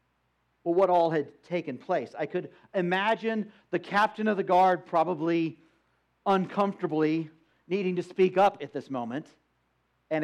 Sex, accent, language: male, American, English